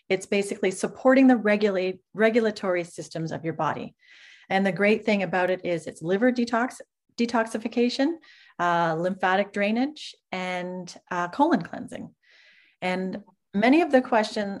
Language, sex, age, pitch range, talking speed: English, female, 30-49, 175-220 Hz, 135 wpm